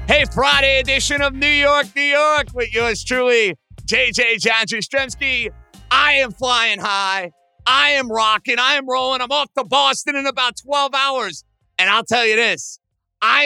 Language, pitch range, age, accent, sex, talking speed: English, 195-270 Hz, 40-59, American, male, 165 wpm